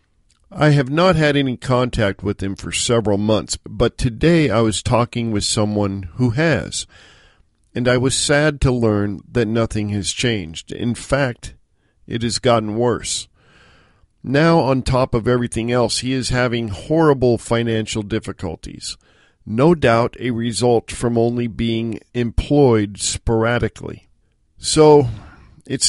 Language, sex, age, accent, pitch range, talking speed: English, male, 50-69, American, 105-135 Hz, 135 wpm